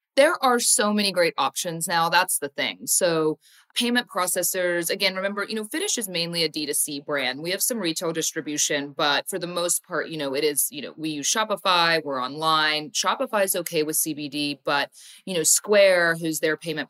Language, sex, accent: English, female, American